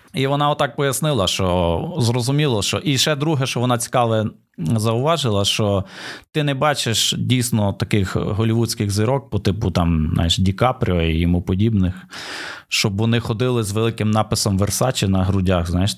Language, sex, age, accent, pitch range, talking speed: Ukrainian, male, 20-39, native, 100-125 Hz, 145 wpm